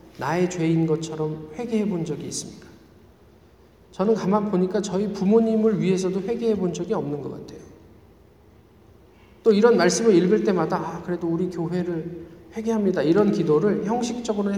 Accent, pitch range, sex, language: native, 155-205 Hz, male, Korean